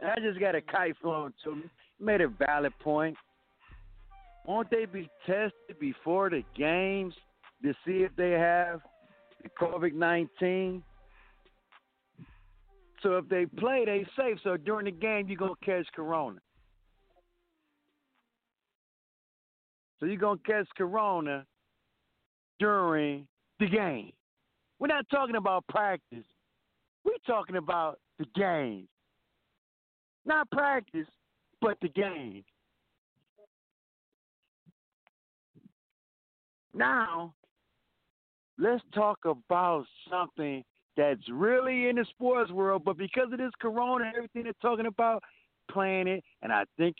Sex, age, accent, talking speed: male, 60-79, American, 115 wpm